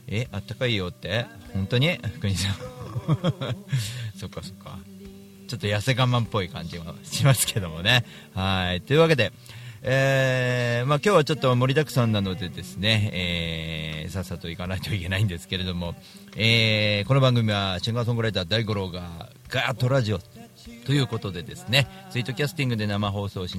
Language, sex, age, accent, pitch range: Japanese, male, 40-59, native, 95-130 Hz